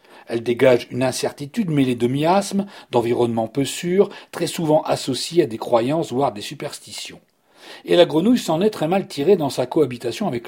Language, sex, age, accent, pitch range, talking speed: French, male, 40-59, French, 125-175 Hz, 180 wpm